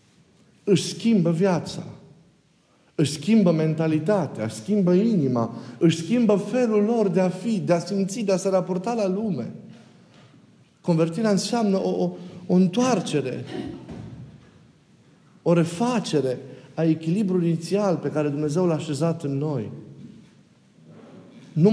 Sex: male